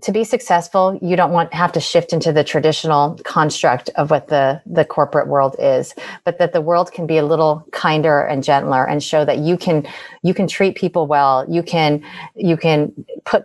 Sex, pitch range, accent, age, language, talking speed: female, 145-175 Hz, American, 30-49, English, 205 wpm